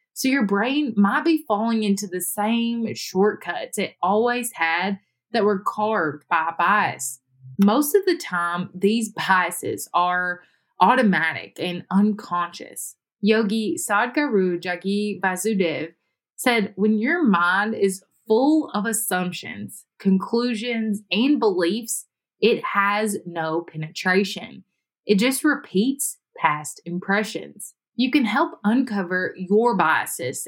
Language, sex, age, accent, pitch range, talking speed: English, female, 20-39, American, 180-235 Hz, 115 wpm